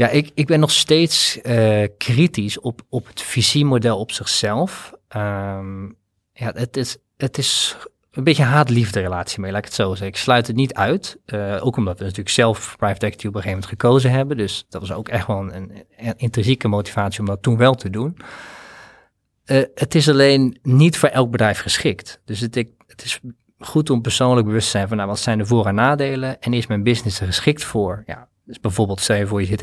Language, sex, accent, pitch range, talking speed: Dutch, male, Dutch, 100-125 Hz, 215 wpm